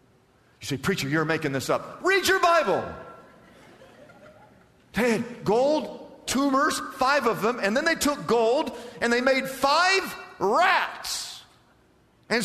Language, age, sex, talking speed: English, 50-69, male, 135 wpm